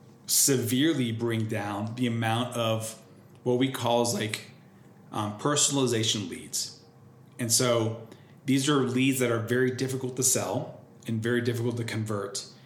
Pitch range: 115-130 Hz